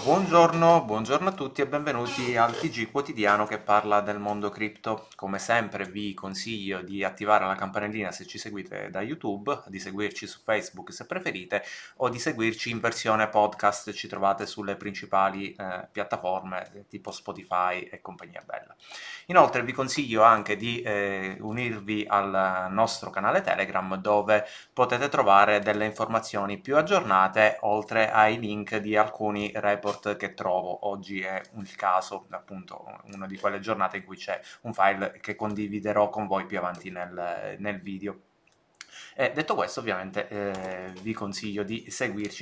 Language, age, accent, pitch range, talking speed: Italian, 30-49, native, 100-115 Hz, 155 wpm